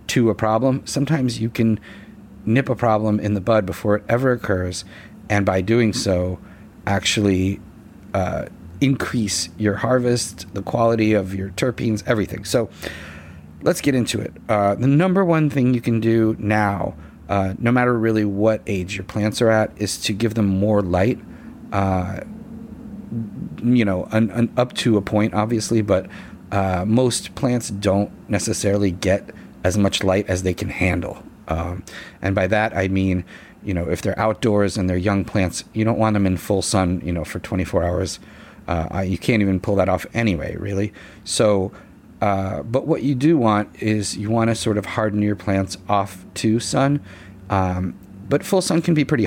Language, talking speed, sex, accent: English, 175 wpm, male, American